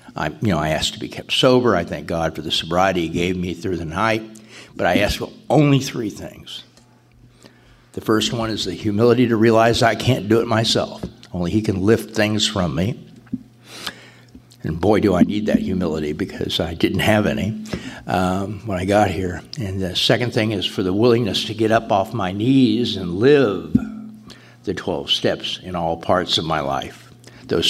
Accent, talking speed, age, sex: American, 195 wpm, 60-79, male